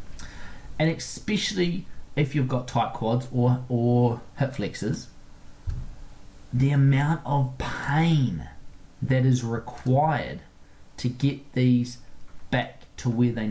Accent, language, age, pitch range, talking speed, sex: Australian, English, 30-49, 110-135 Hz, 110 wpm, male